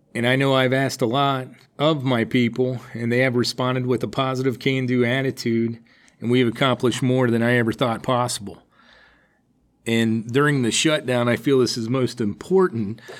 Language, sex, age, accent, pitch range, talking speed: English, male, 40-59, American, 115-130 Hz, 175 wpm